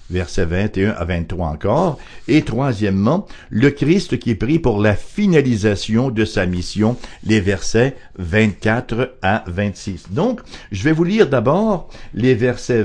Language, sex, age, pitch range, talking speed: English, male, 60-79, 95-130 Hz, 140 wpm